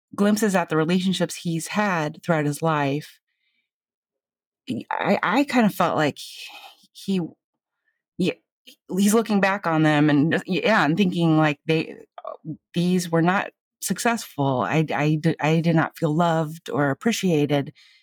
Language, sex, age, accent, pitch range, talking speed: English, female, 30-49, American, 150-185 Hz, 140 wpm